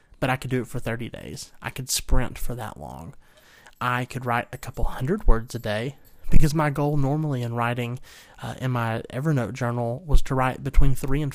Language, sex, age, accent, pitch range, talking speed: English, male, 30-49, American, 125-145 Hz, 210 wpm